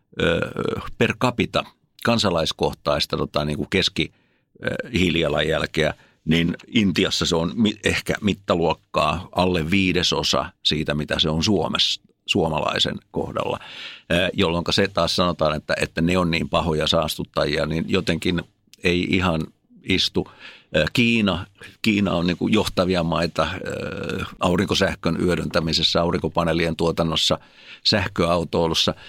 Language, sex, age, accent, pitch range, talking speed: Finnish, male, 60-79, native, 80-100 Hz, 95 wpm